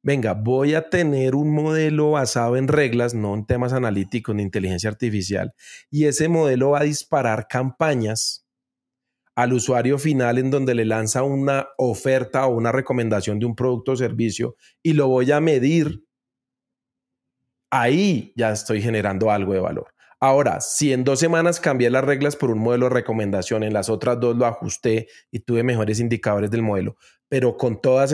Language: Spanish